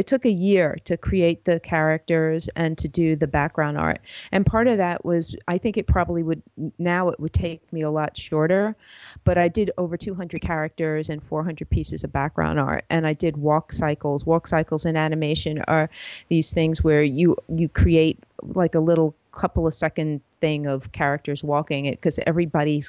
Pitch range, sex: 150-170 Hz, female